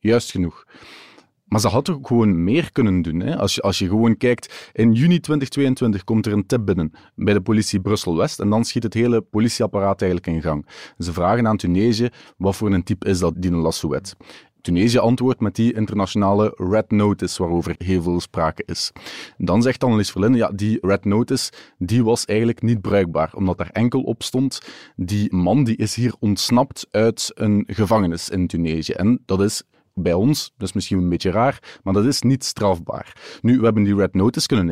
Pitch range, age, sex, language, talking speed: 95-125 Hz, 30-49, male, Dutch, 195 wpm